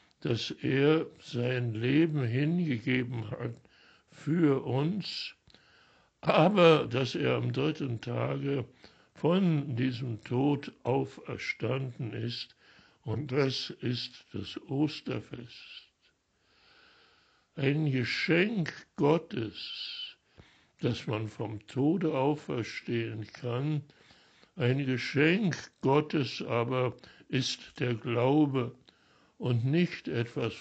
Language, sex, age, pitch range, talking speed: German, male, 60-79, 120-150 Hz, 85 wpm